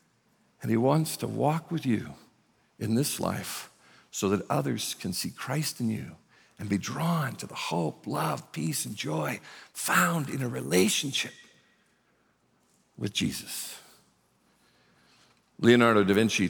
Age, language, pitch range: 50-69, English, 120-175 Hz